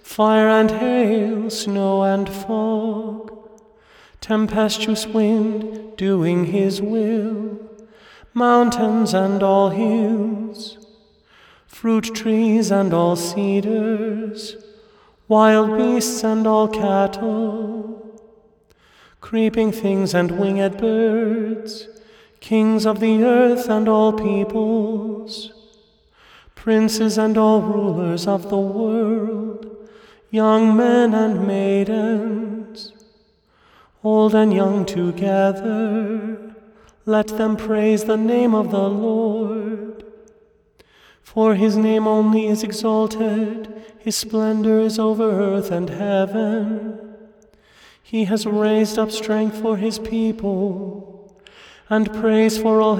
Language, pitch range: English, 215-220 Hz